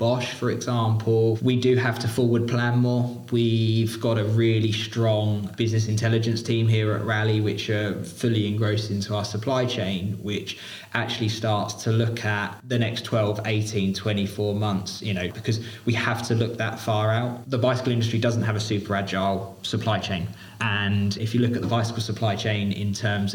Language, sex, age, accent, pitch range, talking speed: English, male, 20-39, British, 105-115 Hz, 185 wpm